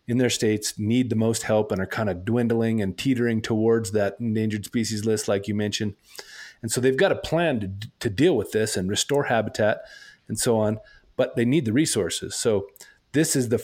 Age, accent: 30-49, American